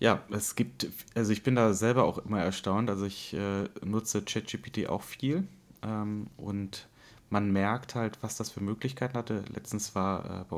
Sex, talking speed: male, 180 wpm